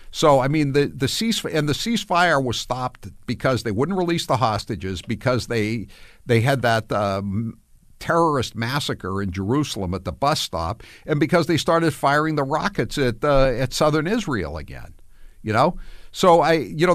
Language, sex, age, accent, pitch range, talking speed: English, male, 60-79, American, 105-155 Hz, 175 wpm